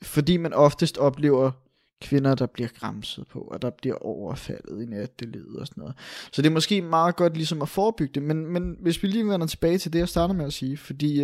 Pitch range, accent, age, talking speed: 150-180 Hz, native, 20-39, 230 wpm